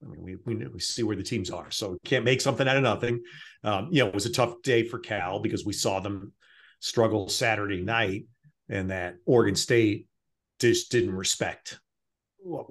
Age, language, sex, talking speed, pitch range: 40-59, English, male, 205 wpm, 100-120 Hz